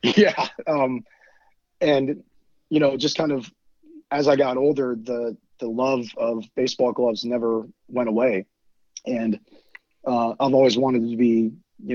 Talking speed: 145 wpm